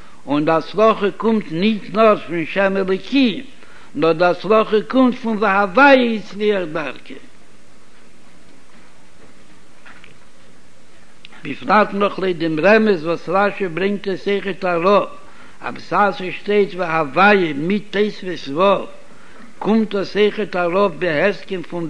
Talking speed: 75 wpm